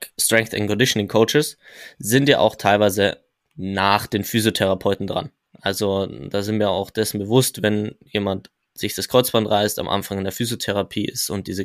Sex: male